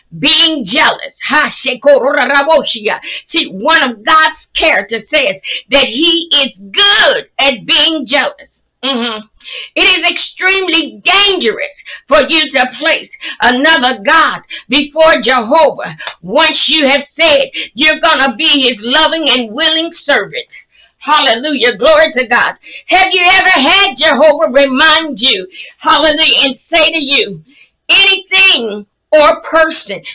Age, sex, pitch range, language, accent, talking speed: 50-69, female, 265-325 Hz, English, American, 120 wpm